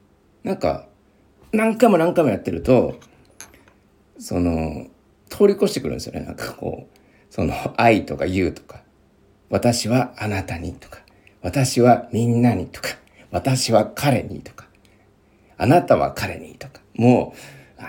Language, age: Japanese, 50-69